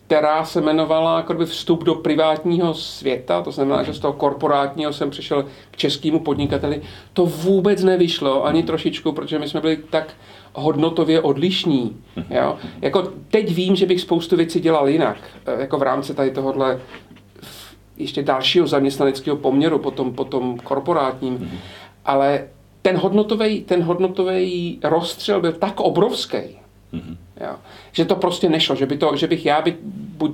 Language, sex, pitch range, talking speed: Czech, male, 140-165 Hz, 140 wpm